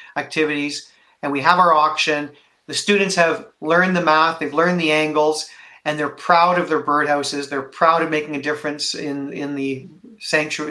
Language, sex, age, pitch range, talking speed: English, male, 40-59, 155-190 Hz, 180 wpm